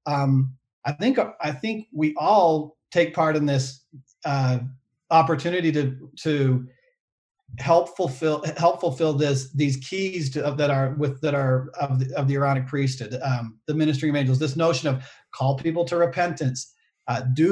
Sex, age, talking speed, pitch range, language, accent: male, 40-59, 160 wpm, 135-155 Hz, English, American